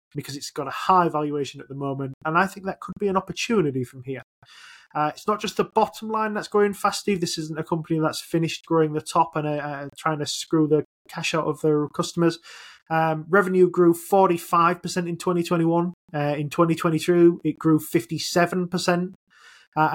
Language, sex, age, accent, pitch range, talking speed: English, male, 20-39, British, 150-175 Hz, 195 wpm